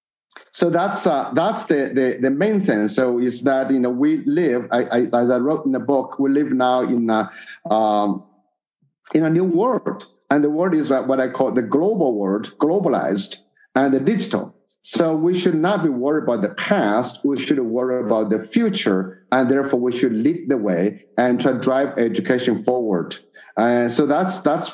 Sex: male